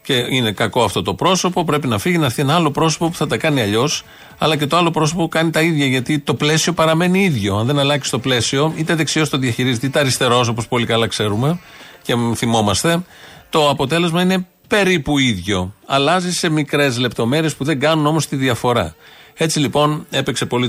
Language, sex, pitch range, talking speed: Greek, male, 115-155 Hz, 200 wpm